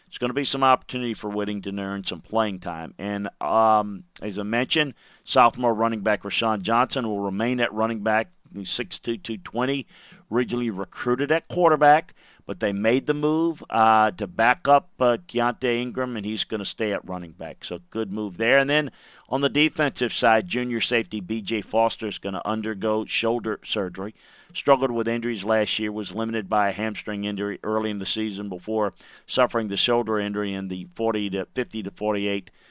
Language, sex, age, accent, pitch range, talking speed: English, male, 40-59, American, 100-120 Hz, 185 wpm